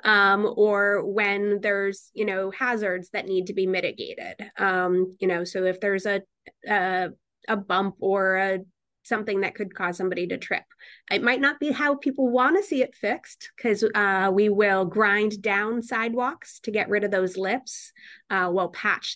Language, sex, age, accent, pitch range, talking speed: English, female, 20-39, American, 190-225 Hz, 180 wpm